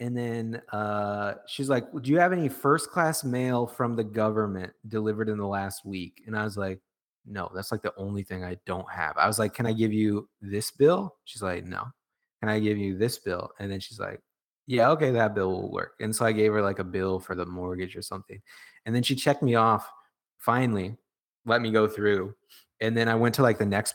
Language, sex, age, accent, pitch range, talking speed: English, male, 20-39, American, 95-120 Hz, 235 wpm